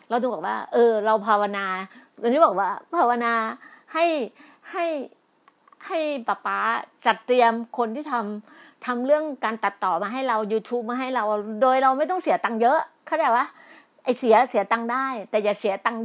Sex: female